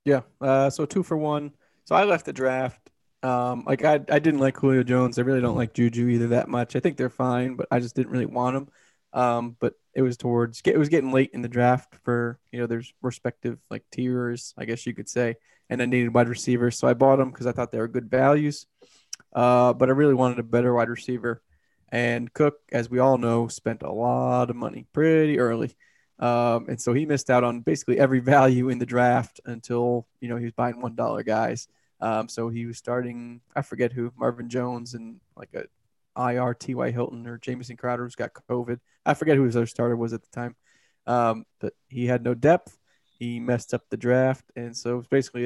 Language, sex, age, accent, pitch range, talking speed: English, male, 20-39, American, 120-130 Hz, 220 wpm